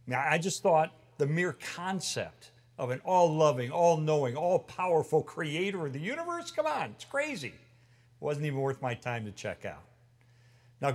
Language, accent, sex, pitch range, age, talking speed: English, American, male, 120-160 Hz, 50-69, 160 wpm